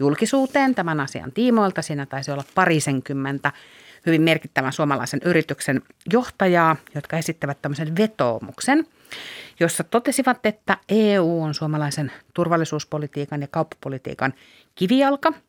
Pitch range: 145-195 Hz